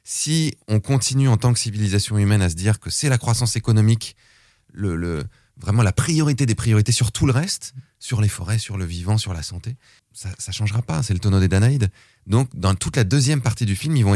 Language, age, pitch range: French, 30-49, 95-120 Hz